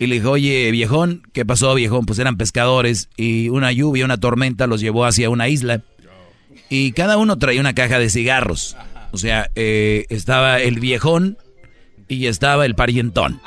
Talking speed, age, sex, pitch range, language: 175 wpm, 40-59, male, 115-145 Hz, Spanish